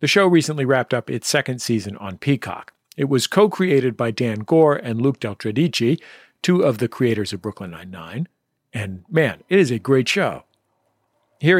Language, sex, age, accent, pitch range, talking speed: English, male, 50-69, American, 120-175 Hz, 175 wpm